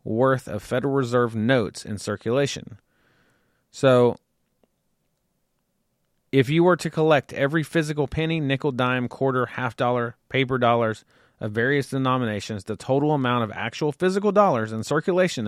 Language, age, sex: English, 30-49, male